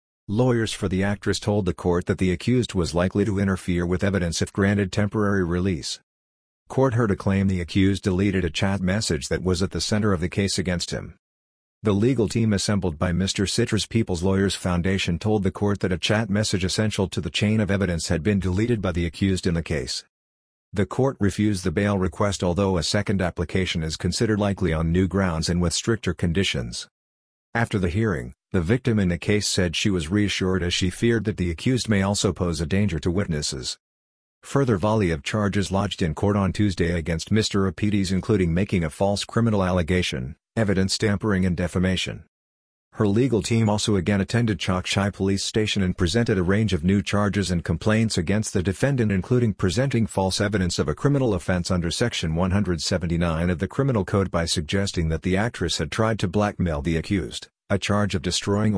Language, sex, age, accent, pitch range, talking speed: English, male, 50-69, American, 90-105 Hz, 195 wpm